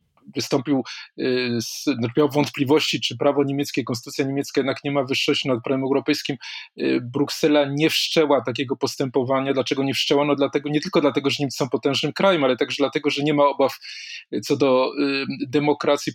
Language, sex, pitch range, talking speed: Polish, male, 135-155 Hz, 165 wpm